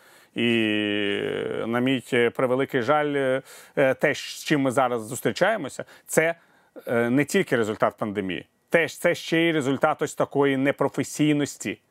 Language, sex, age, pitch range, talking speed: Ukrainian, male, 40-59, 140-175 Hz, 120 wpm